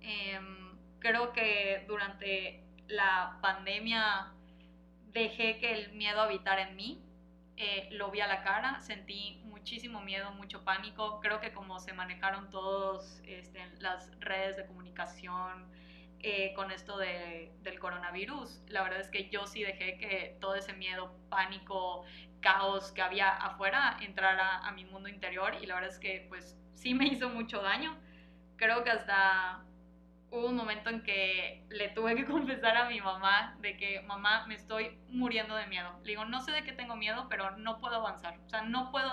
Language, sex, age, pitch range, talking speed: Spanish, female, 20-39, 185-225 Hz, 170 wpm